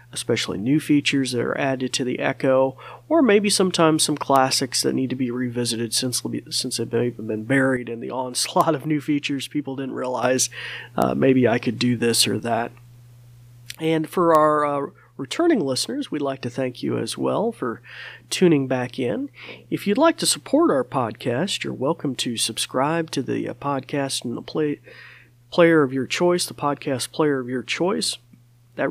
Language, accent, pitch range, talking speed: English, American, 125-155 Hz, 185 wpm